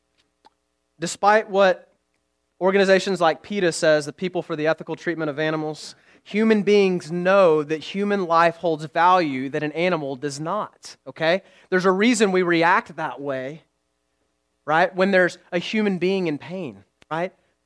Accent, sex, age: American, male, 30-49